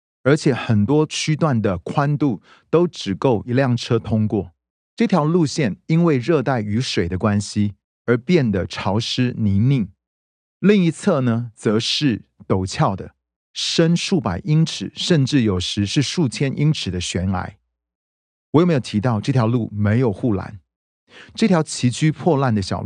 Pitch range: 100-145 Hz